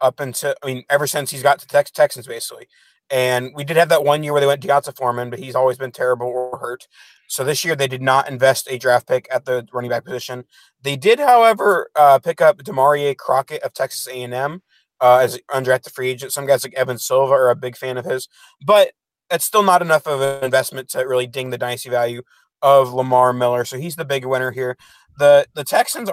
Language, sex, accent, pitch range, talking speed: English, male, American, 130-155 Hz, 230 wpm